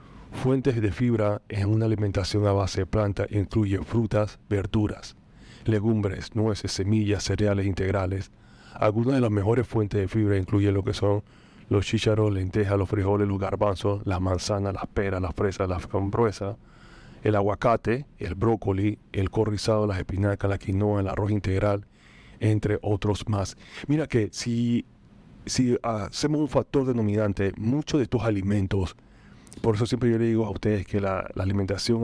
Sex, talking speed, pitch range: male, 155 wpm, 100-115 Hz